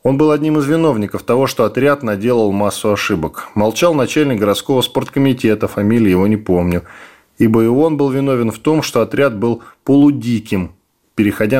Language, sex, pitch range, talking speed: Russian, male, 105-130 Hz, 160 wpm